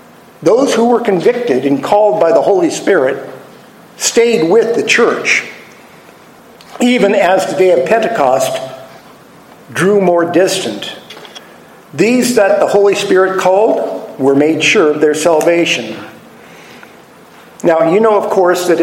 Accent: American